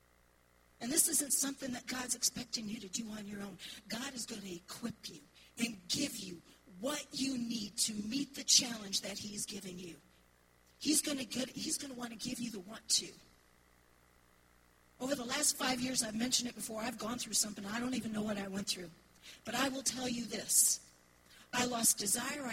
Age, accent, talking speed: 40-59, American, 205 wpm